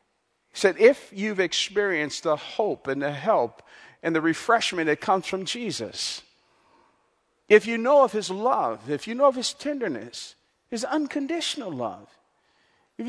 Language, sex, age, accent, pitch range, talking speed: English, male, 50-69, American, 240-305 Hz, 155 wpm